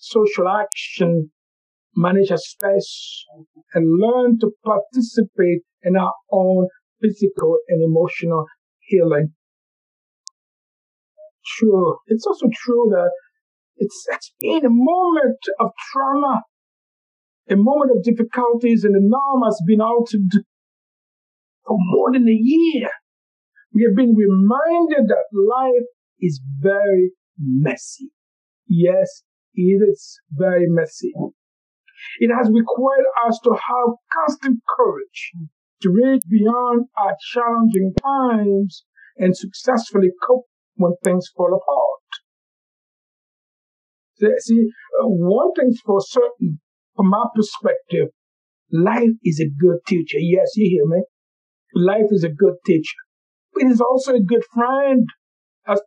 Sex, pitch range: male, 190-260 Hz